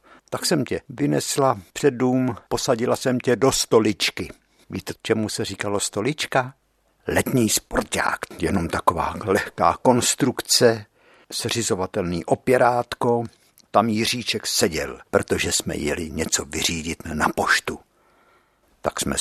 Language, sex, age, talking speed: Czech, male, 60-79, 110 wpm